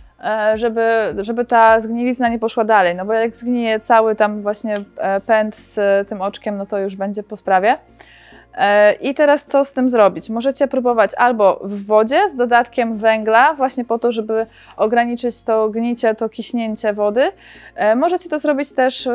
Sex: female